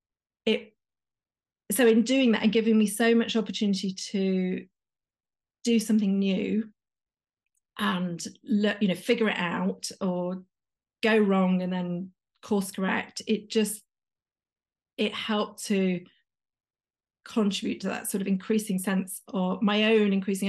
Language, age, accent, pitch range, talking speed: English, 40-59, British, 195-225 Hz, 130 wpm